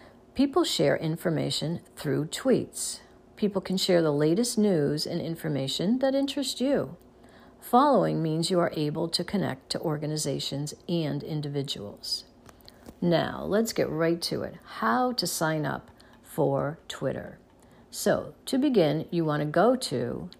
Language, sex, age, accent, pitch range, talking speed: English, female, 50-69, American, 145-200 Hz, 135 wpm